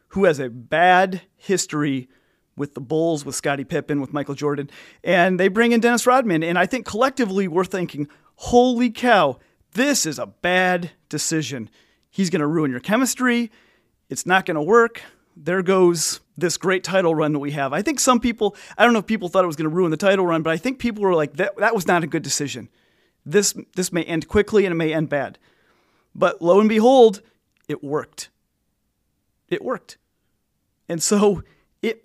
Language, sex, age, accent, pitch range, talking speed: English, male, 40-59, American, 155-205 Hz, 195 wpm